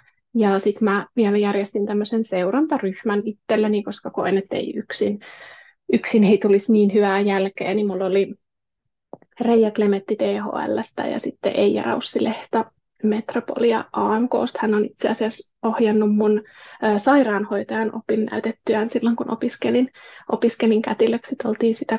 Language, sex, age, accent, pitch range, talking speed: Finnish, female, 20-39, native, 205-240 Hz, 125 wpm